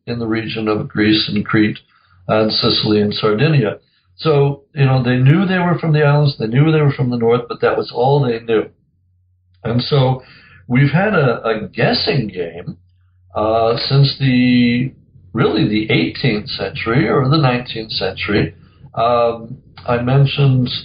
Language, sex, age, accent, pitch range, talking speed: English, male, 60-79, American, 110-140 Hz, 160 wpm